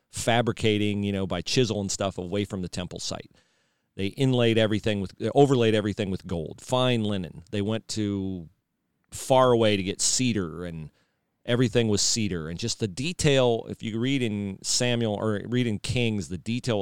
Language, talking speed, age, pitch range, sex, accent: English, 180 wpm, 40-59, 95-125 Hz, male, American